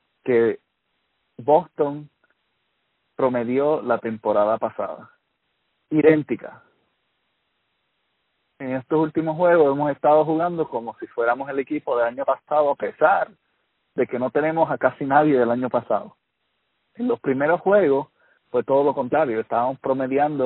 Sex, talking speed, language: male, 130 wpm, Spanish